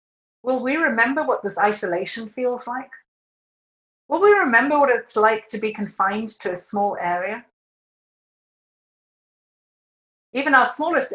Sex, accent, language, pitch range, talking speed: female, British, English, 205-255 Hz, 130 wpm